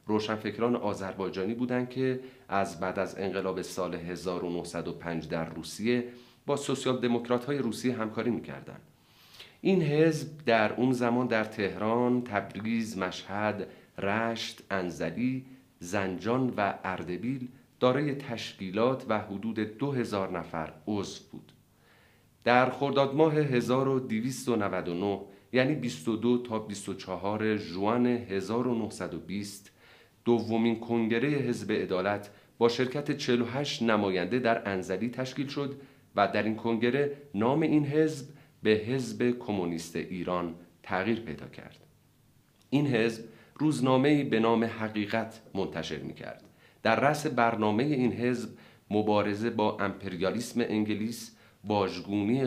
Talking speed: 110 wpm